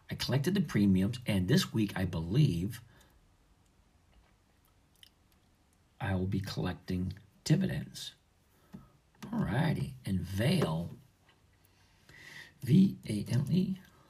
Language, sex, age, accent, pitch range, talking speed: English, male, 50-69, American, 90-130 Hz, 80 wpm